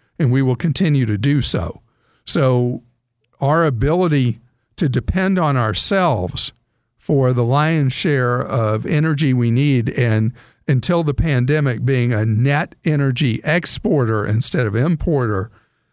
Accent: American